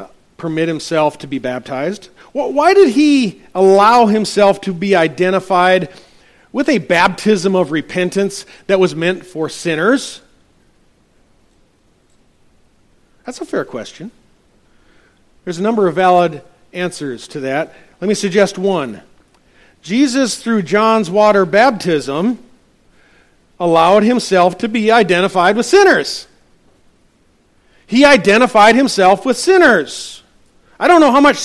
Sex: male